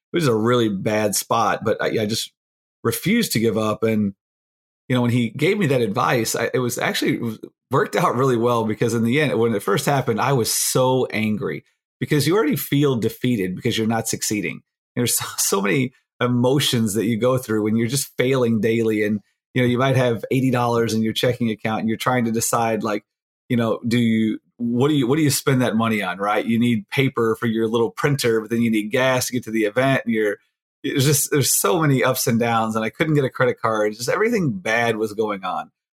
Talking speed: 225 wpm